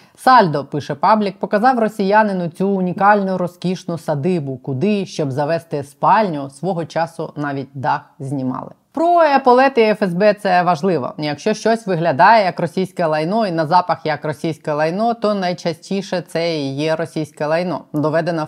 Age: 20-39